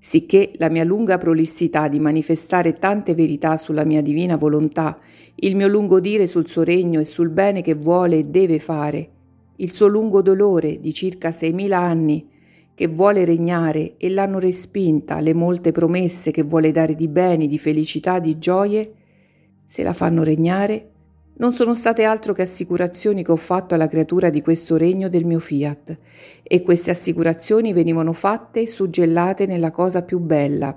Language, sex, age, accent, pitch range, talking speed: Italian, female, 50-69, native, 155-185 Hz, 170 wpm